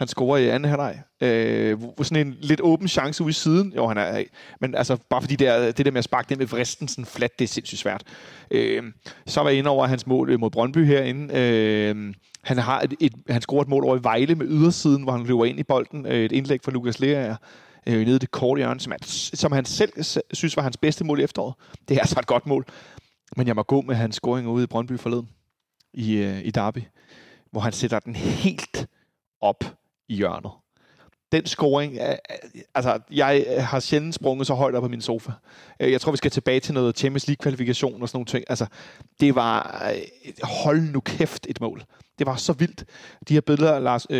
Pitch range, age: 120-150 Hz, 30-49